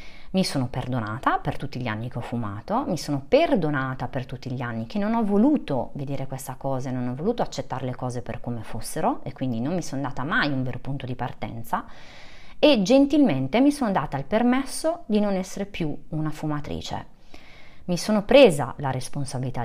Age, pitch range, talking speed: 30-49, 130-200 Hz, 190 wpm